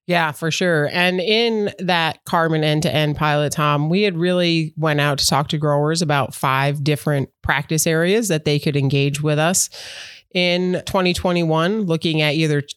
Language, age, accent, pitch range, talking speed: English, 30-49, American, 140-170 Hz, 165 wpm